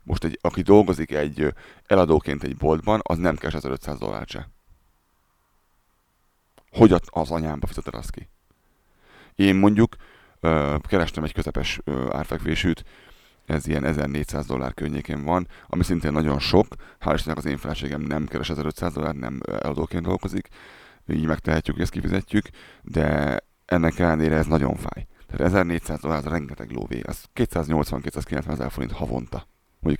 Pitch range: 75-85 Hz